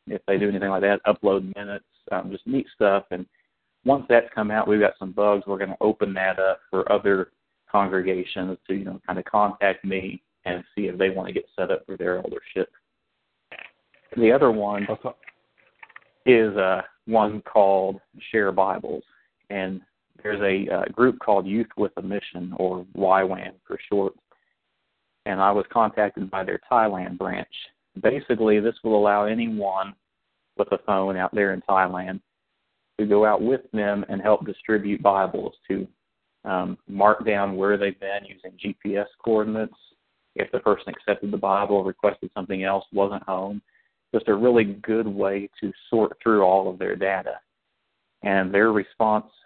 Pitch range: 95-105 Hz